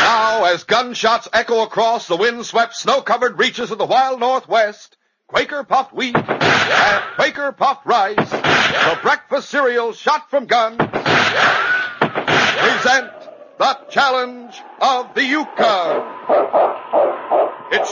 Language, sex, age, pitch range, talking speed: English, male, 60-79, 245-310 Hz, 115 wpm